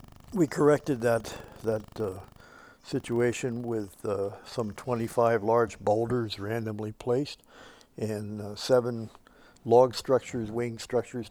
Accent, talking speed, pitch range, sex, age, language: American, 110 wpm, 105-125 Hz, male, 60-79, English